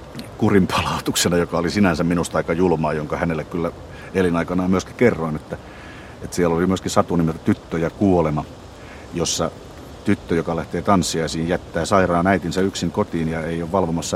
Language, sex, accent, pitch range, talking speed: Finnish, male, native, 80-95 Hz, 160 wpm